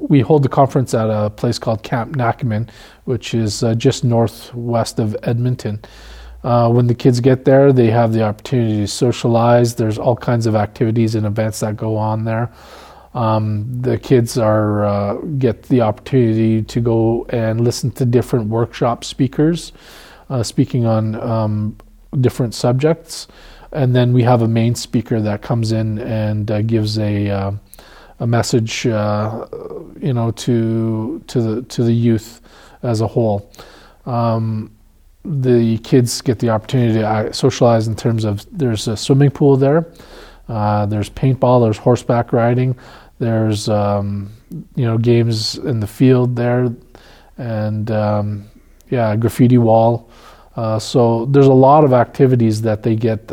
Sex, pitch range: male, 110-125 Hz